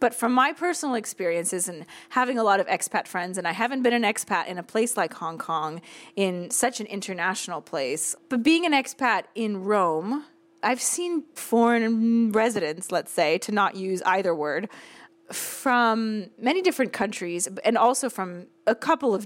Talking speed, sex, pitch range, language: 175 wpm, female, 185-255 Hz, English